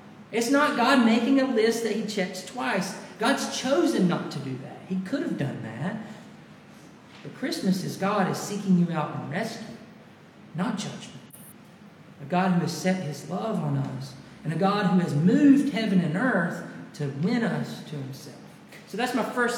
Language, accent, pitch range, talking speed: English, American, 170-230 Hz, 185 wpm